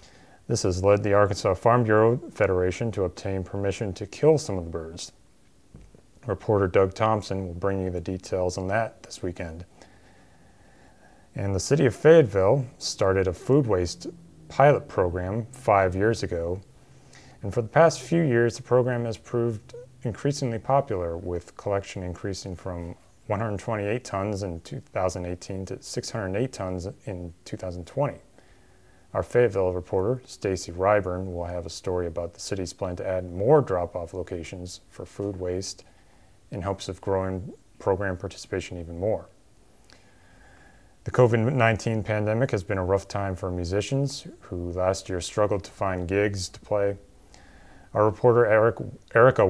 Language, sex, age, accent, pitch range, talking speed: English, male, 30-49, American, 90-115 Hz, 145 wpm